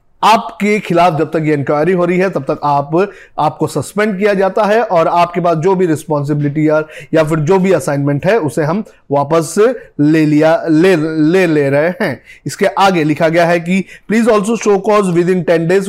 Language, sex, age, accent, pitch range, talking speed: Hindi, male, 30-49, native, 155-195 Hz, 200 wpm